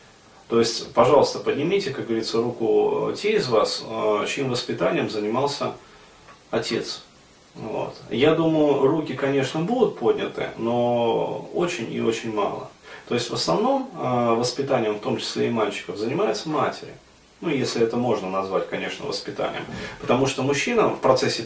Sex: male